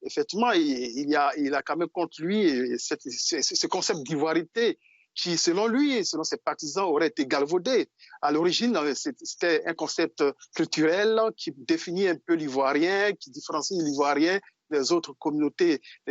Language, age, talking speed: French, 50-69, 150 wpm